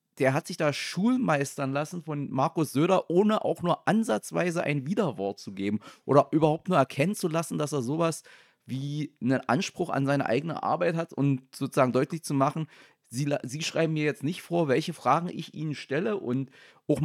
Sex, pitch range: male, 120-150 Hz